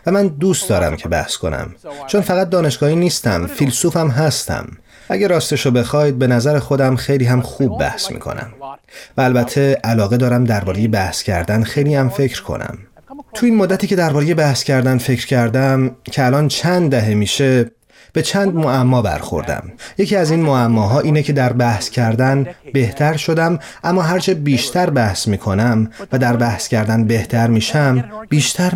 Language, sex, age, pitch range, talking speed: Persian, male, 30-49, 120-155 Hz, 160 wpm